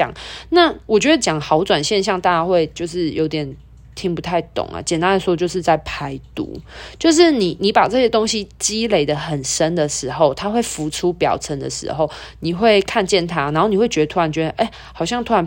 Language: Chinese